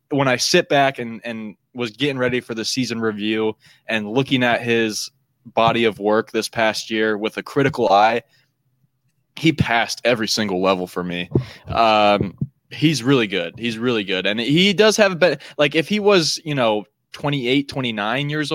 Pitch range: 110-140 Hz